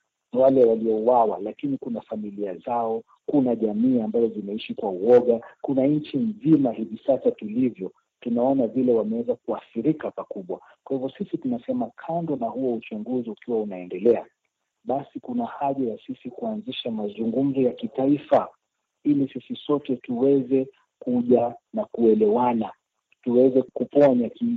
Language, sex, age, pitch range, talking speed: Swahili, male, 50-69, 120-165 Hz, 125 wpm